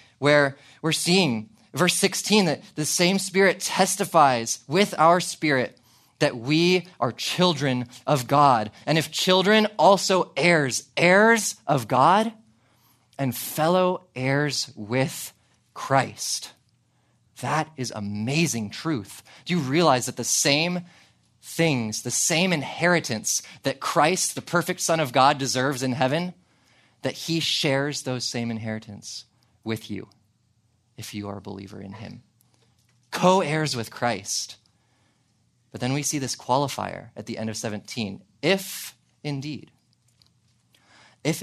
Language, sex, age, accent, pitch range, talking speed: English, male, 20-39, American, 110-150 Hz, 125 wpm